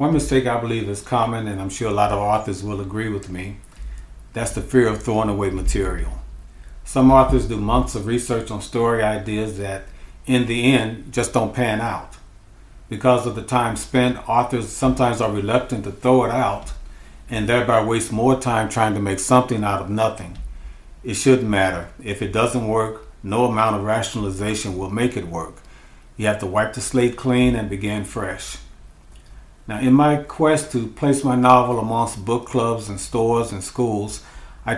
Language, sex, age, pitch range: English, male, 50-69, 100-125 Hz